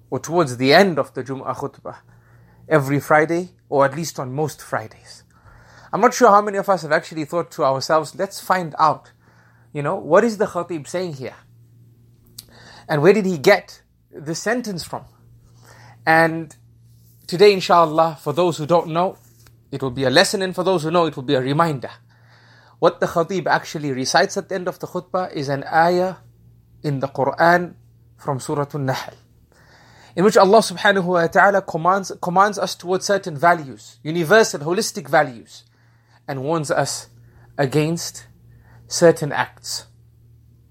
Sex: male